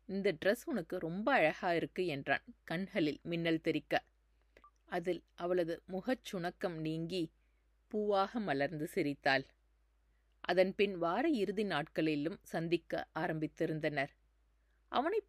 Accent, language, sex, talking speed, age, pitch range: native, Tamil, female, 95 wpm, 30-49, 150-195 Hz